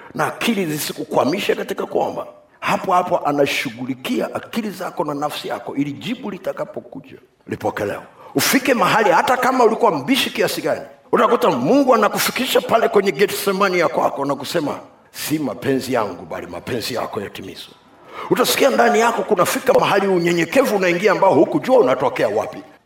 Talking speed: 140 wpm